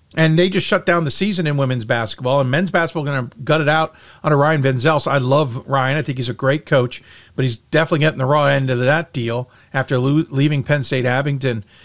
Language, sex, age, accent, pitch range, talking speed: English, male, 50-69, American, 140-180 Hz, 235 wpm